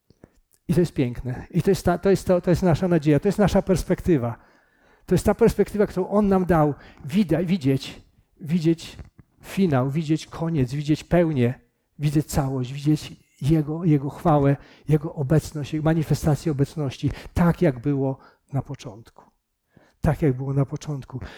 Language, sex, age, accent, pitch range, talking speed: Polish, male, 50-69, native, 150-205 Hz, 155 wpm